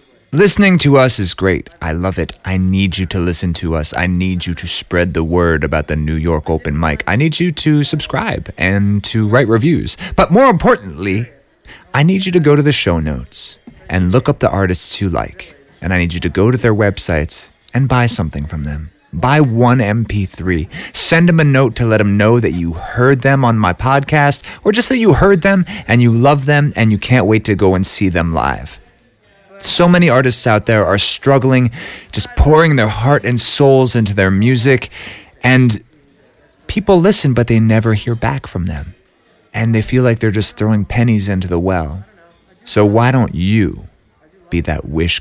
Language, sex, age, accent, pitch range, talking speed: English, male, 30-49, American, 90-140 Hz, 200 wpm